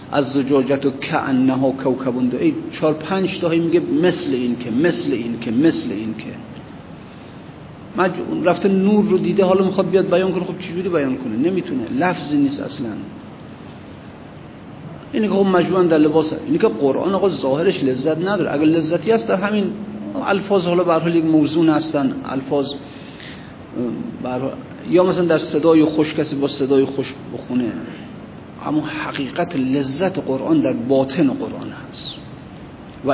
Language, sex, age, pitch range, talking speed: Persian, male, 50-69, 140-190 Hz, 150 wpm